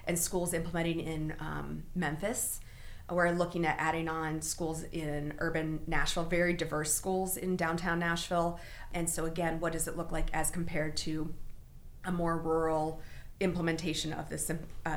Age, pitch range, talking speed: 30-49, 155-175 Hz, 155 wpm